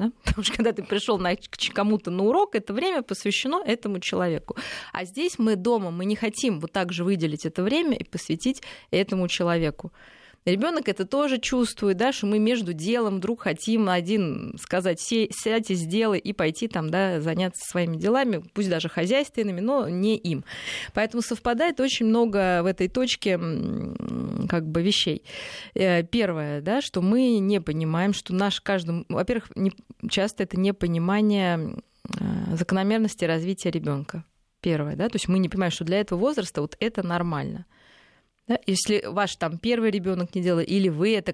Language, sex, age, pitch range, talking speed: Russian, female, 20-39, 175-225 Hz, 165 wpm